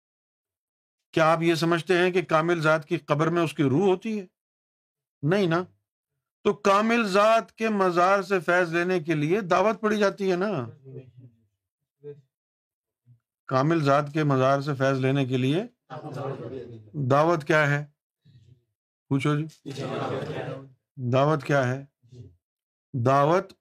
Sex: male